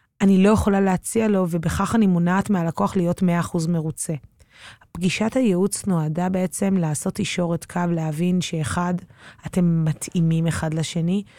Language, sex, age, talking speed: Hebrew, female, 20-39, 130 wpm